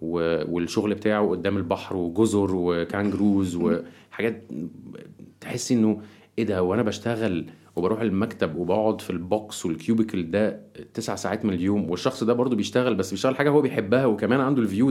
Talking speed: 150 wpm